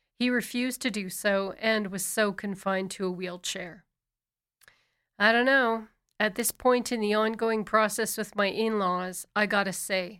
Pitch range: 190-230 Hz